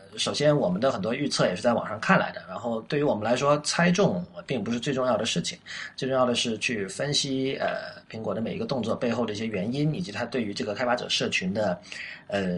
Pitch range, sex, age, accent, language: 110-145 Hz, male, 30-49, native, Chinese